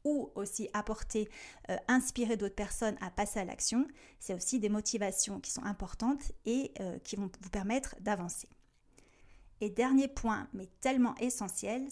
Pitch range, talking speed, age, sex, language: 200-245 Hz, 155 wpm, 30-49, female, French